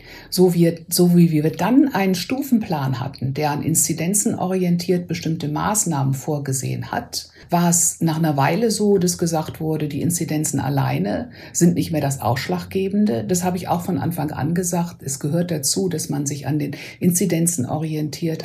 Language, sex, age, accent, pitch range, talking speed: German, female, 60-79, German, 145-185 Hz, 165 wpm